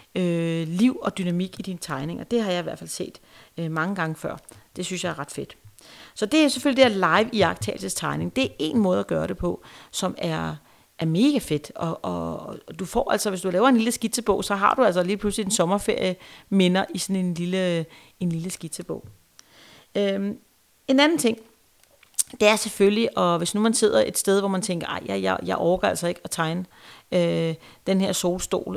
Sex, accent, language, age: female, native, Danish, 40-59